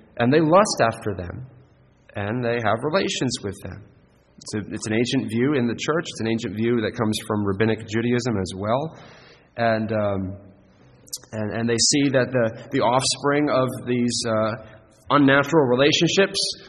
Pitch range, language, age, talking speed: 105-140 Hz, English, 30-49, 165 wpm